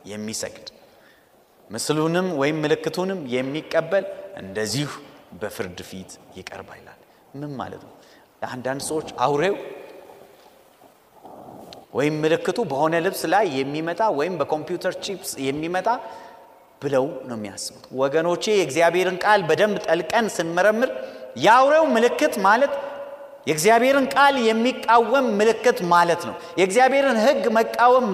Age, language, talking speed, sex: 30-49, Amharic, 100 wpm, male